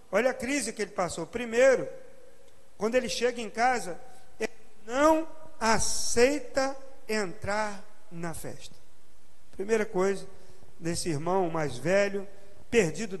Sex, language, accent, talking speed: male, Portuguese, Brazilian, 115 wpm